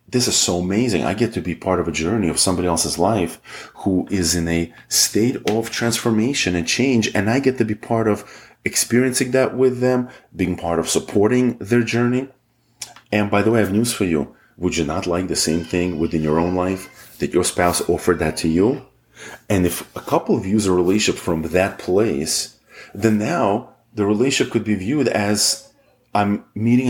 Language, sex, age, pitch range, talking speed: English, male, 30-49, 90-115 Hz, 200 wpm